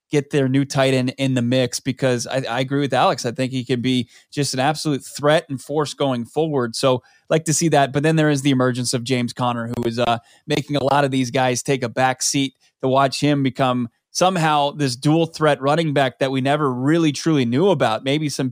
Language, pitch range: English, 130-150 Hz